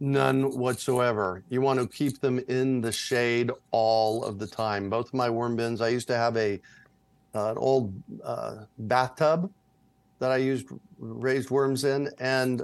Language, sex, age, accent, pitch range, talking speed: English, male, 50-69, American, 115-135 Hz, 165 wpm